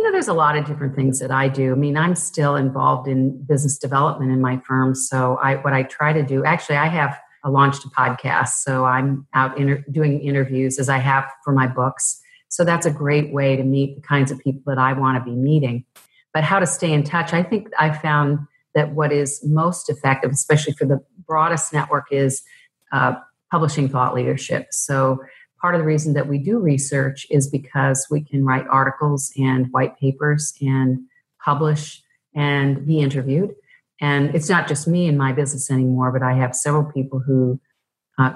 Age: 40-59